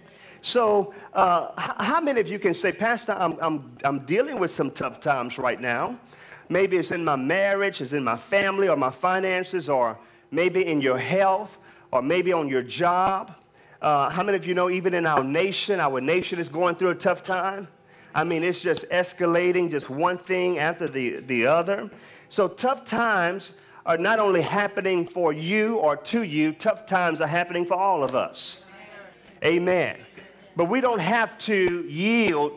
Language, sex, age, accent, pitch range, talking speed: English, male, 40-59, American, 160-200 Hz, 180 wpm